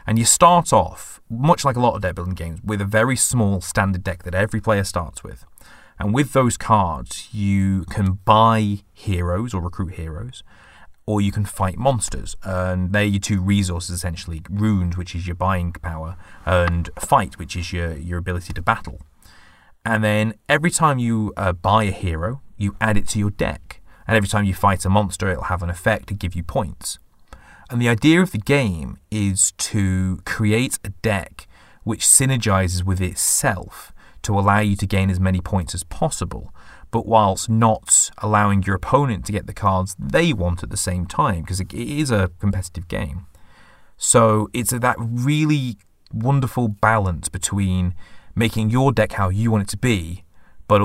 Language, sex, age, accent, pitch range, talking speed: English, male, 30-49, British, 90-110 Hz, 180 wpm